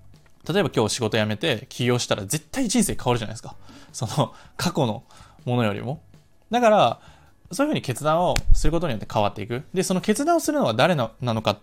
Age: 20-39